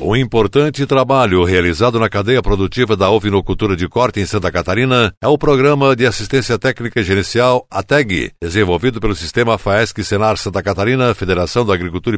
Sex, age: male, 60-79